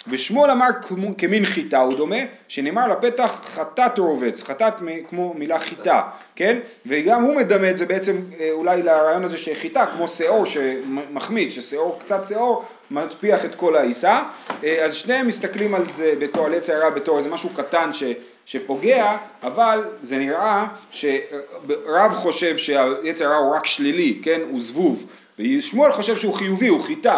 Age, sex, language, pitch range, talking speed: 30-49, male, Hebrew, 150-215 Hz, 150 wpm